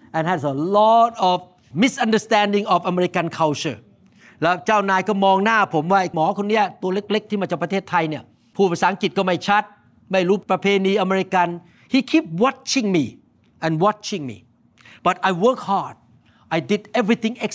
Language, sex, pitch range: Thai, male, 175-225 Hz